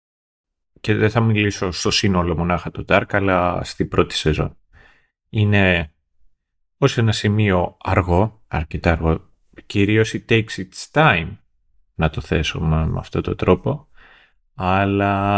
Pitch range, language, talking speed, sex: 90-115 Hz, Greek, 130 wpm, male